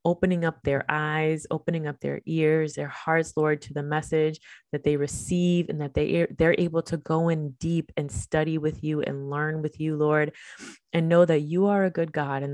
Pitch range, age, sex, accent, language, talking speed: 150-170 Hz, 20-39, female, American, English, 205 wpm